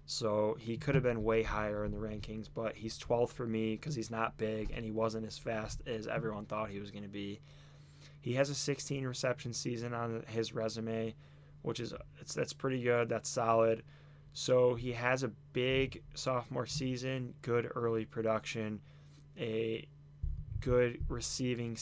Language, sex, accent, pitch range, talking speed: English, male, American, 110-140 Hz, 170 wpm